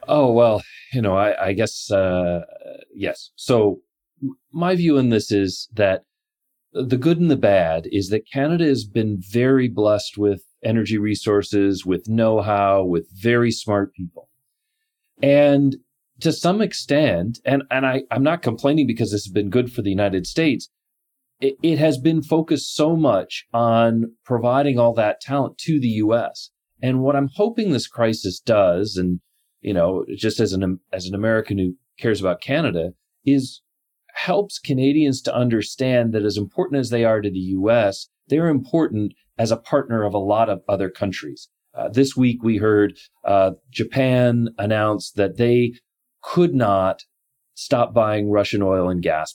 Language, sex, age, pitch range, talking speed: English, male, 40-59, 100-135 Hz, 160 wpm